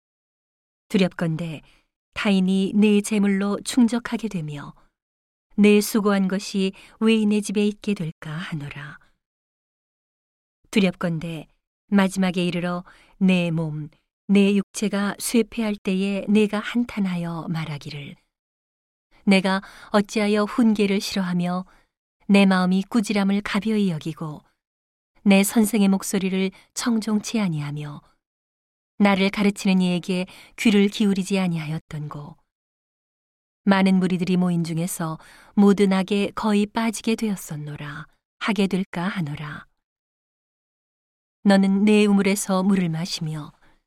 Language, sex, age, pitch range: Korean, female, 40-59, 175-210 Hz